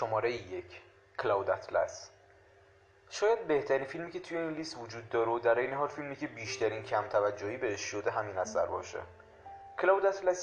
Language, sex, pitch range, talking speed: Persian, male, 115-150 Hz, 165 wpm